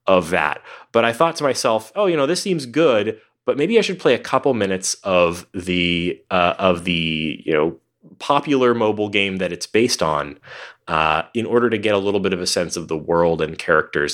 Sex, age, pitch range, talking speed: male, 30-49, 90-125 Hz, 215 wpm